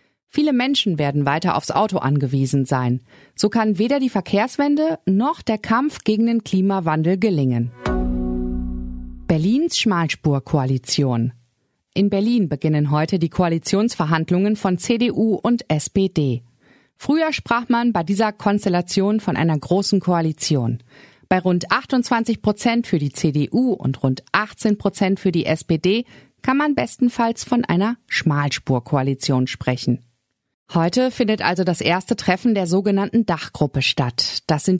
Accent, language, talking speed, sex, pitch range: German, German, 130 wpm, female, 145-220 Hz